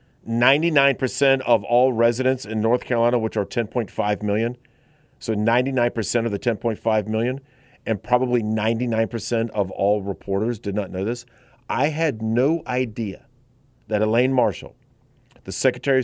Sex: male